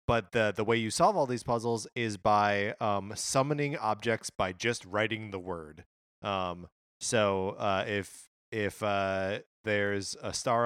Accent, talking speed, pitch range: American, 160 wpm, 95-120 Hz